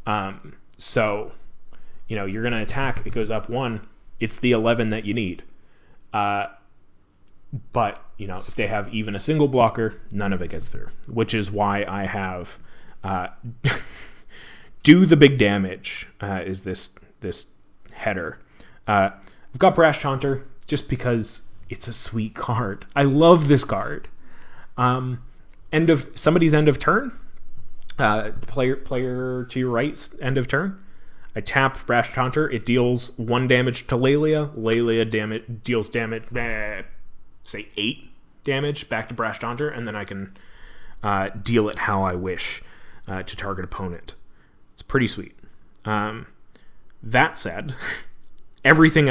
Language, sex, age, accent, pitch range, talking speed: English, male, 30-49, American, 100-130 Hz, 150 wpm